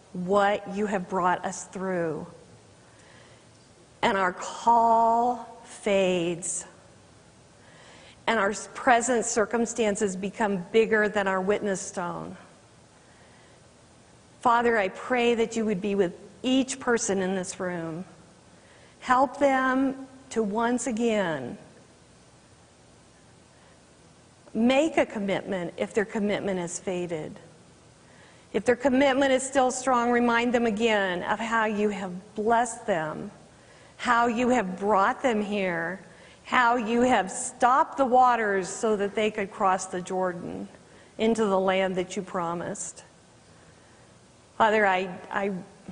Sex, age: female, 40-59